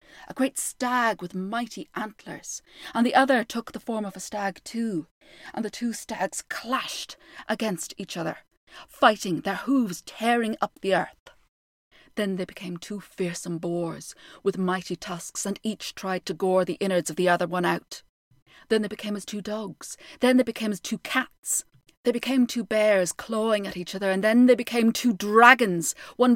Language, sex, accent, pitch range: English, female, British, 190-230 Hz